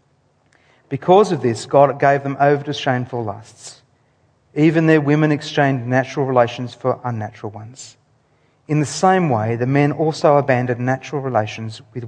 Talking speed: 150 wpm